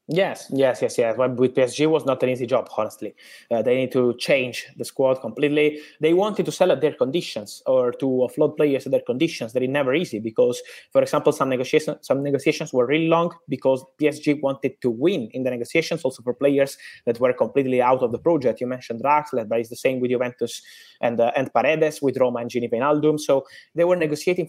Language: English